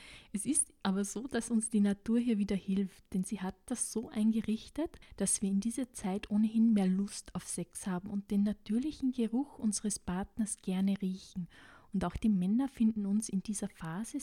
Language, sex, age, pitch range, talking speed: German, female, 20-39, 195-230 Hz, 190 wpm